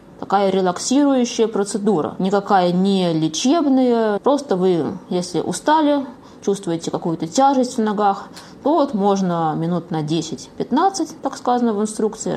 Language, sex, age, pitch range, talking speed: Russian, female, 20-39, 180-230 Hz, 120 wpm